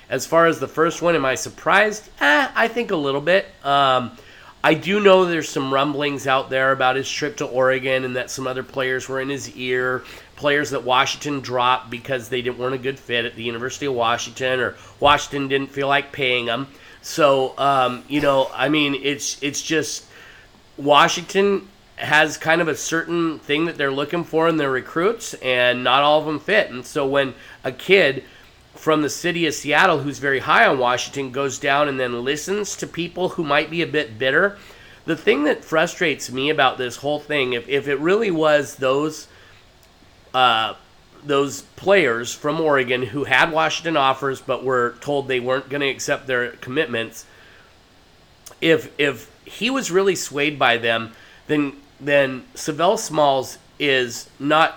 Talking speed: 185 wpm